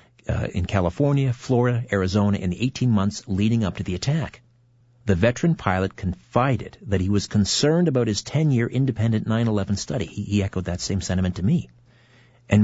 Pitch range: 95-120 Hz